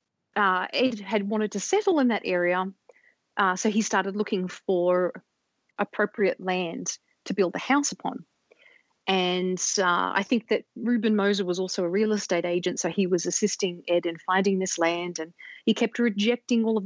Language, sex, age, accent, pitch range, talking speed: English, female, 30-49, Australian, 185-225 Hz, 180 wpm